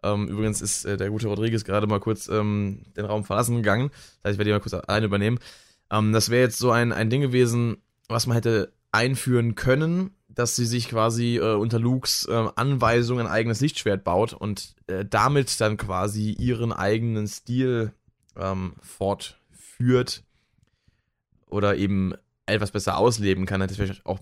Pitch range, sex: 95-115 Hz, male